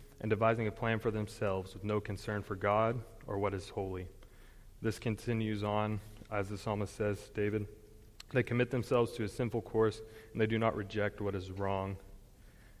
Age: 20-39